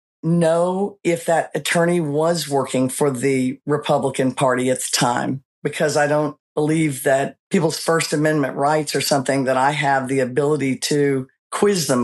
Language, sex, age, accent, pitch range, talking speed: English, female, 50-69, American, 145-180 Hz, 160 wpm